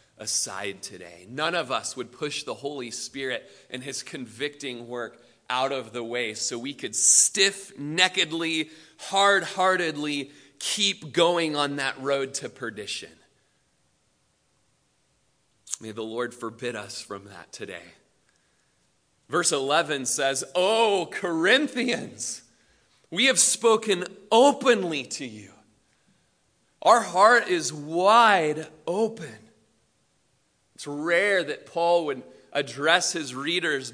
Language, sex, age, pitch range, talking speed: English, male, 30-49, 135-230 Hz, 110 wpm